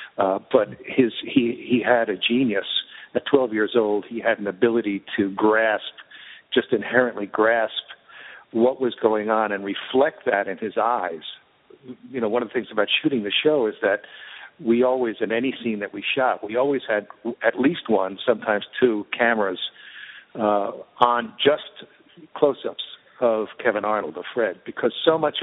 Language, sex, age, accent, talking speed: English, male, 60-79, American, 170 wpm